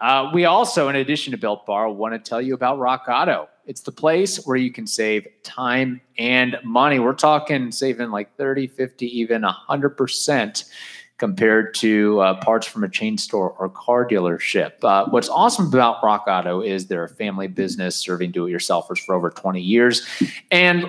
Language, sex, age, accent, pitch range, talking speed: English, male, 30-49, American, 105-140 Hz, 180 wpm